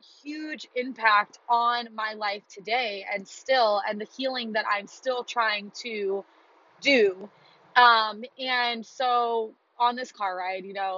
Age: 20-39